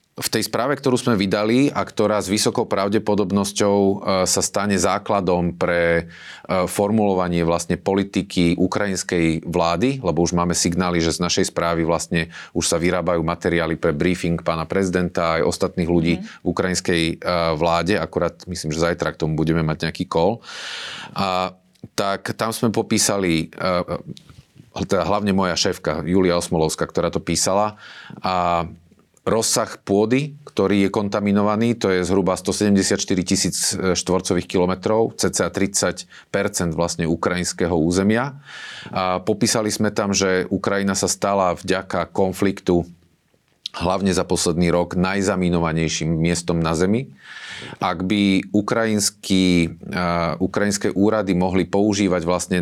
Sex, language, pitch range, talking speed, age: male, Slovak, 85-100 Hz, 130 wpm, 30-49